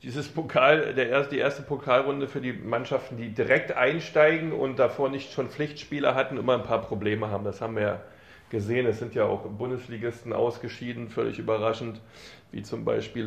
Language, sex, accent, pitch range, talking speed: German, male, German, 110-125 Hz, 180 wpm